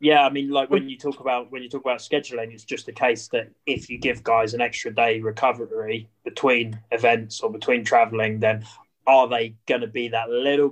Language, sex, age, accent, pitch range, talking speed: English, male, 20-39, British, 115-150 Hz, 220 wpm